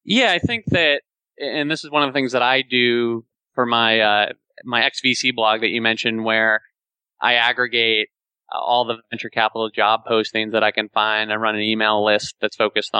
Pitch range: 110-125 Hz